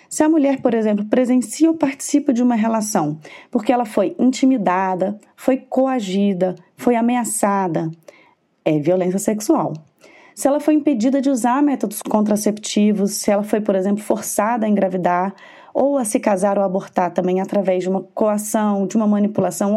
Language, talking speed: Portuguese, 160 wpm